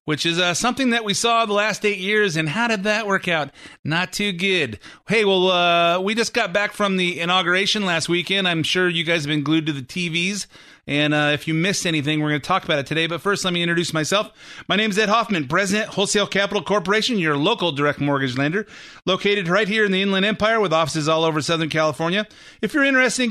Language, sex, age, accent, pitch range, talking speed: English, male, 30-49, American, 150-200 Hz, 235 wpm